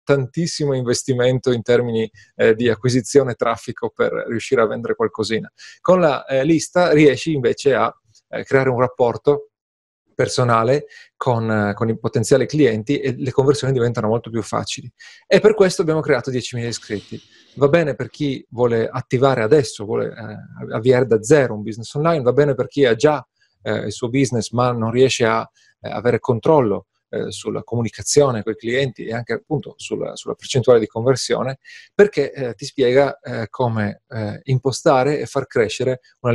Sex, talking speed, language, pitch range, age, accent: male, 170 wpm, Italian, 115-145 Hz, 30-49, native